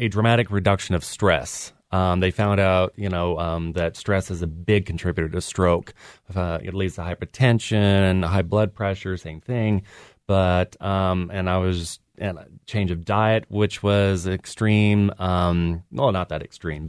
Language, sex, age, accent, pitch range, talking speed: English, male, 30-49, American, 90-100 Hz, 170 wpm